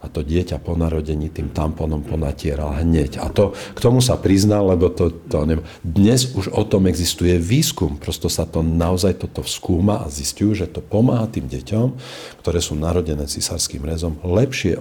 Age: 50-69